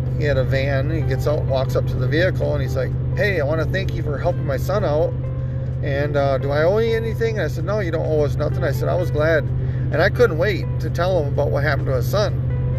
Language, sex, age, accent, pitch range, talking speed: English, male, 40-59, American, 125-135 Hz, 280 wpm